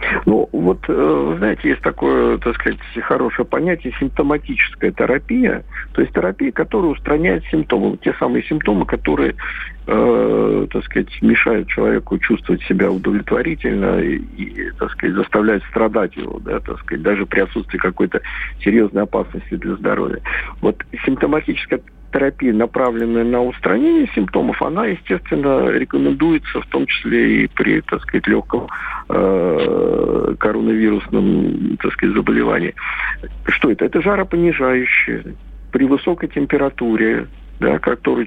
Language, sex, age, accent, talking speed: Russian, male, 50-69, native, 120 wpm